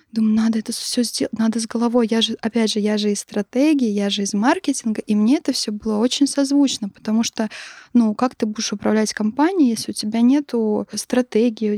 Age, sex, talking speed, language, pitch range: 20-39, female, 205 wpm, Russian, 220-250 Hz